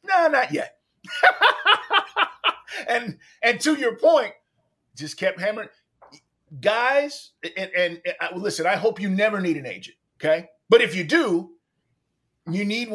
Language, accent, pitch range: English, American, 185-280 Hz